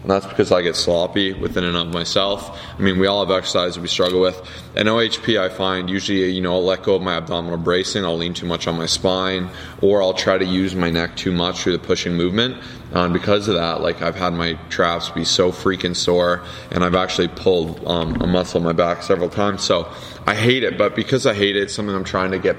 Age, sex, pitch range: 20-39, male, 85-95 Hz